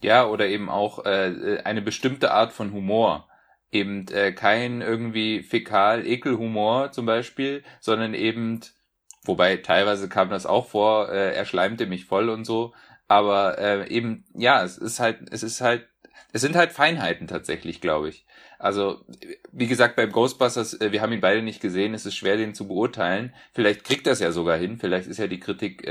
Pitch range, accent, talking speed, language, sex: 105-125 Hz, German, 180 wpm, German, male